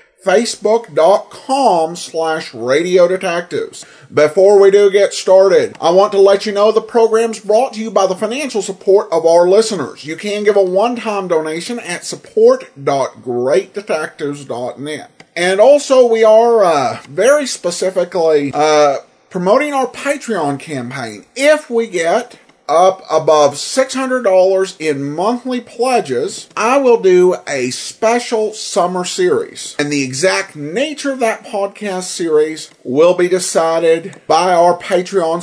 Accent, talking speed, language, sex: American, 130 wpm, English, male